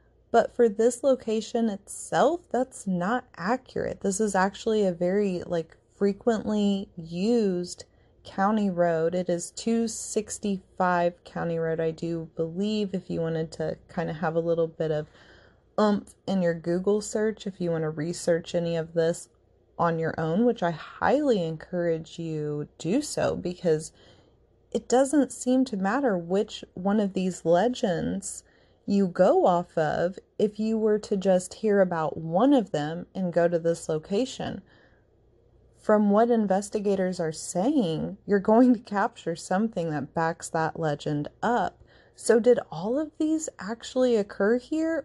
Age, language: 30-49, English